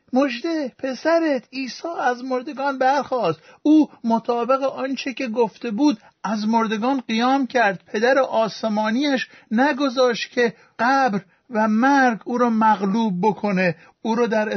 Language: Persian